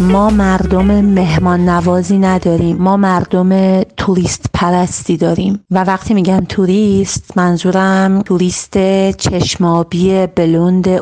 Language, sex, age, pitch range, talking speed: Persian, female, 40-59, 180-220 Hz, 100 wpm